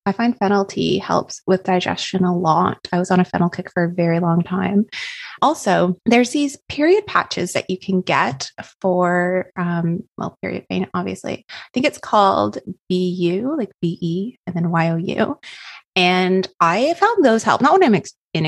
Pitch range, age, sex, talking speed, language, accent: 175-225 Hz, 20-39, female, 175 wpm, English, American